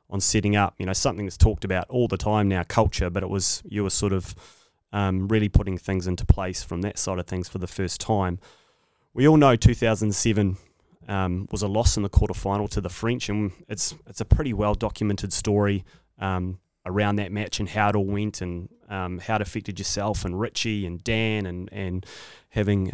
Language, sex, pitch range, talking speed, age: English, male, 95-110 Hz, 215 wpm, 20-39